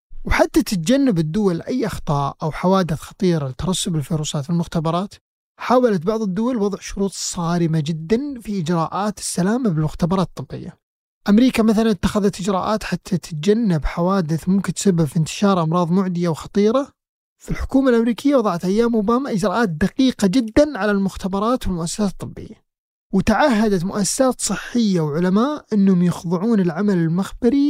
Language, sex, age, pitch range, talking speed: Arabic, male, 30-49, 175-240 Hz, 125 wpm